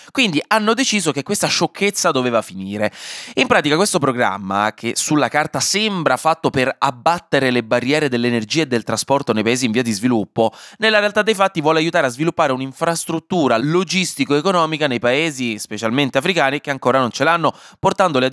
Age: 20-39